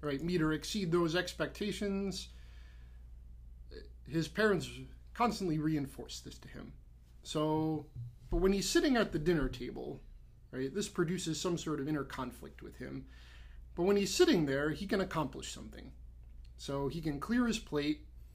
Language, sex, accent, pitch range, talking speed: English, male, American, 125-170 Hz, 155 wpm